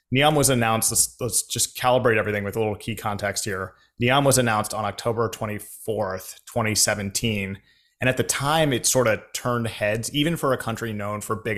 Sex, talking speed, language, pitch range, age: male, 190 wpm, English, 105-125 Hz, 30-49